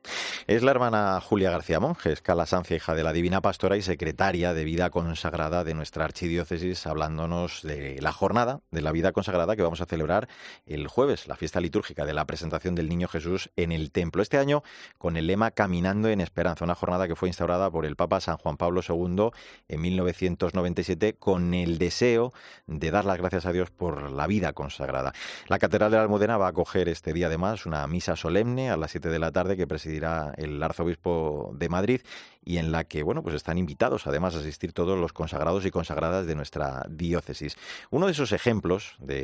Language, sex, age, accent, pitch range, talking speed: Spanish, male, 30-49, Spanish, 80-95 Hz, 200 wpm